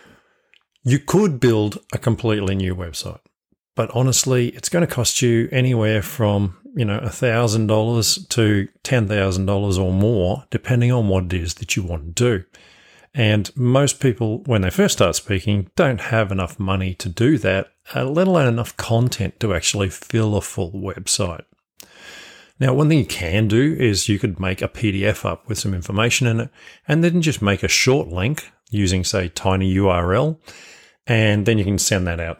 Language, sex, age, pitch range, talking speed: English, male, 40-59, 95-125 Hz, 175 wpm